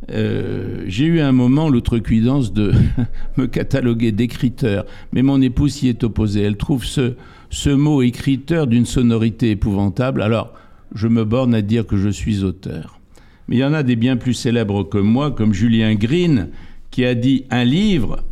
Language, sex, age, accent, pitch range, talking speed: French, male, 60-79, French, 105-140 Hz, 175 wpm